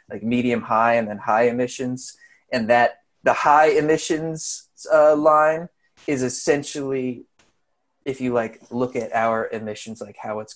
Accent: American